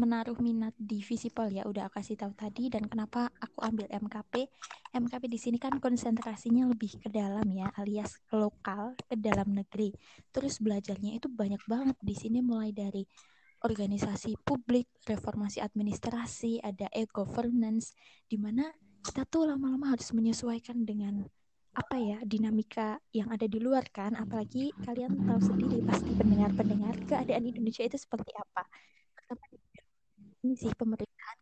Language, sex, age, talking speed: Indonesian, female, 20-39, 140 wpm